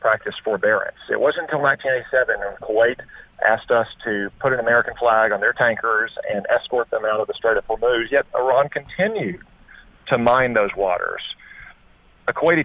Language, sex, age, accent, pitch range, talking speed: English, male, 40-59, American, 110-150 Hz, 170 wpm